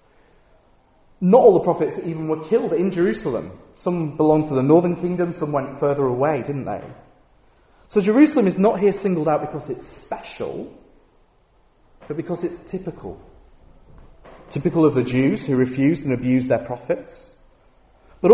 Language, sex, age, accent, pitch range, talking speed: English, male, 30-49, British, 135-190 Hz, 150 wpm